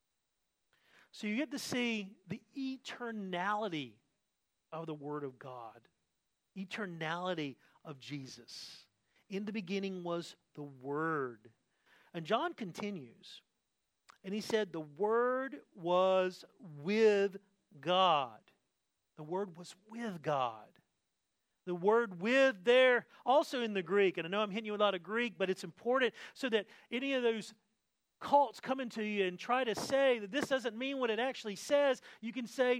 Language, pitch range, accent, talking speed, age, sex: English, 190-255 Hz, American, 150 wpm, 40-59, male